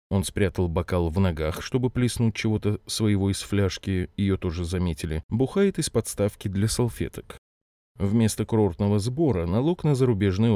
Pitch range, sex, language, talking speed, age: 90-120 Hz, male, Russian, 140 wpm, 20-39